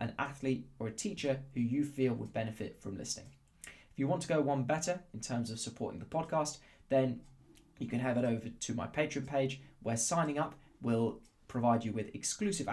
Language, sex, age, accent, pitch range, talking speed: English, male, 20-39, British, 115-135 Hz, 205 wpm